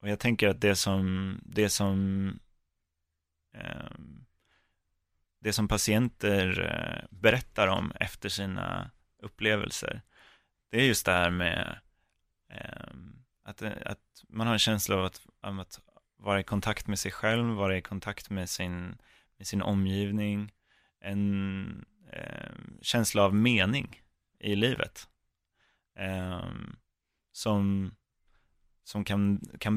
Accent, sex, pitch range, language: native, male, 95-105 Hz, Swedish